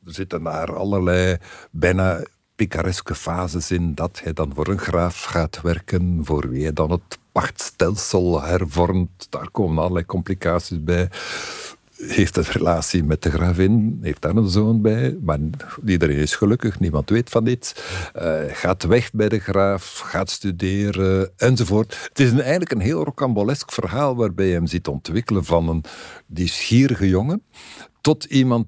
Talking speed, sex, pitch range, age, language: 155 wpm, male, 80-105 Hz, 60-79, Dutch